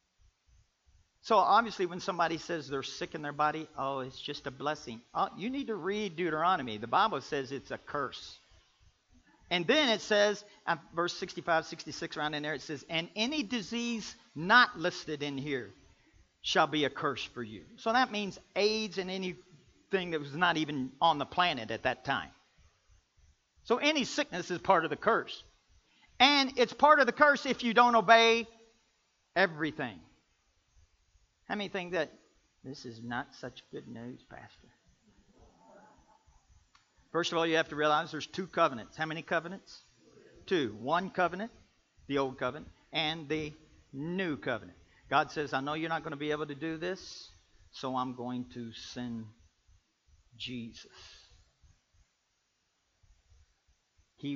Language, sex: English, male